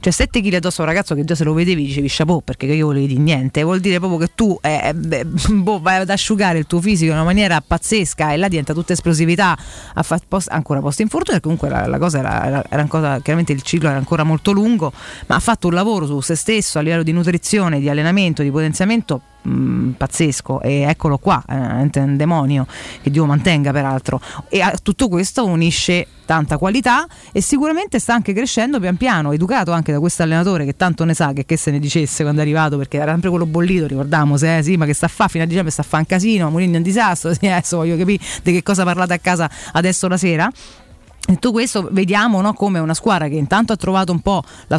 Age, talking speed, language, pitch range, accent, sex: 30-49, 230 wpm, Italian, 150-190 Hz, native, female